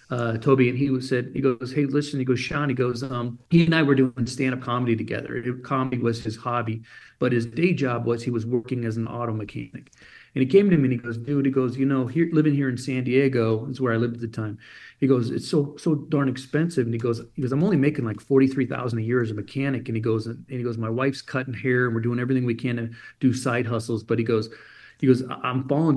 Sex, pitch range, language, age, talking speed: male, 120-140 Hz, English, 40-59, 270 wpm